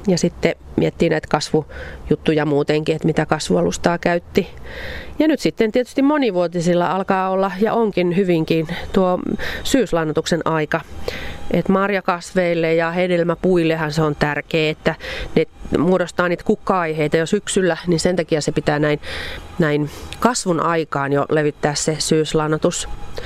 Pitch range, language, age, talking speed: 155-195 Hz, Finnish, 30-49, 130 wpm